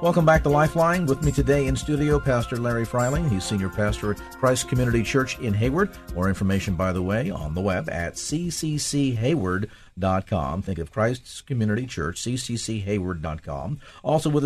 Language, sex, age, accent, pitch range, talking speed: English, male, 50-69, American, 90-125 Hz, 160 wpm